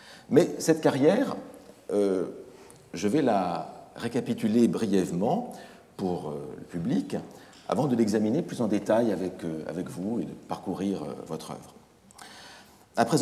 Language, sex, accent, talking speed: French, male, French, 135 wpm